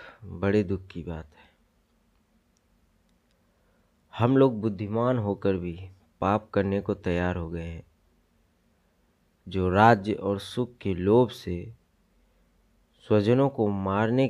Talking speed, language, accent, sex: 115 wpm, Hindi, native, male